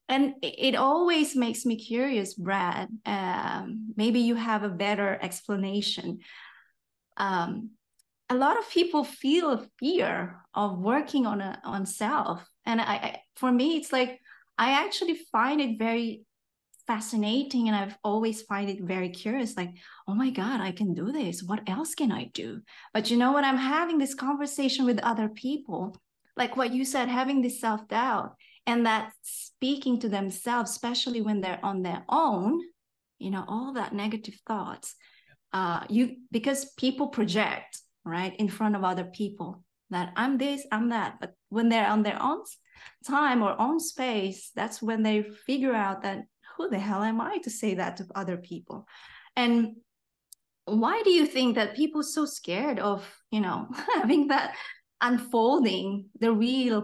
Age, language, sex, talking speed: 20-39, English, female, 165 wpm